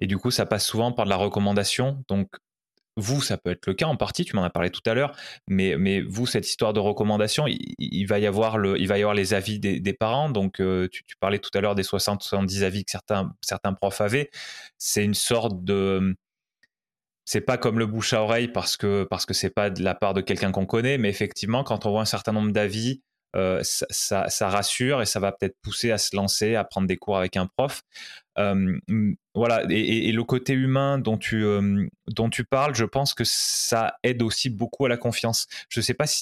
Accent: French